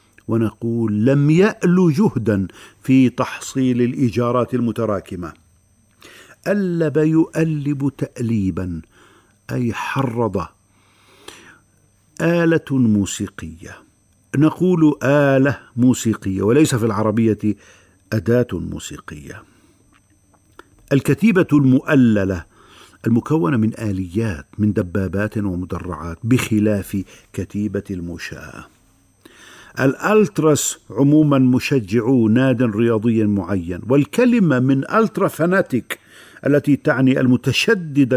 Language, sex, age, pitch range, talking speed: Arabic, male, 50-69, 100-140 Hz, 75 wpm